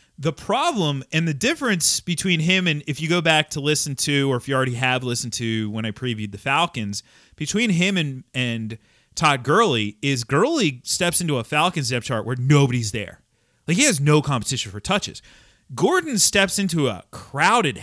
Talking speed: 190 wpm